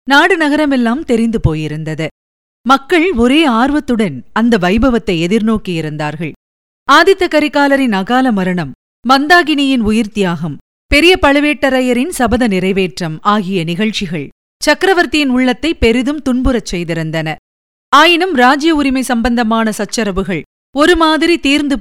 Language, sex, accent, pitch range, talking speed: Tamil, female, native, 200-285 Hz, 95 wpm